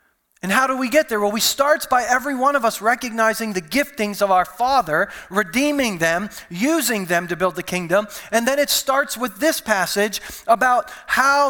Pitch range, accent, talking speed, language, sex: 200-275 Hz, American, 195 wpm, English, male